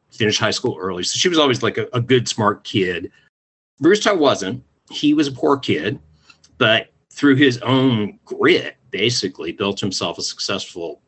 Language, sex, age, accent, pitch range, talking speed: English, male, 50-69, American, 95-140 Hz, 170 wpm